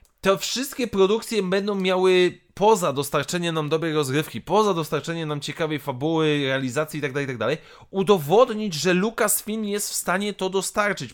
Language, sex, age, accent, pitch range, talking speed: Polish, male, 20-39, native, 155-200 Hz, 140 wpm